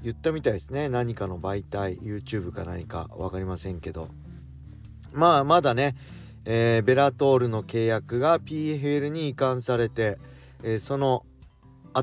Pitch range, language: 100-135 Hz, Japanese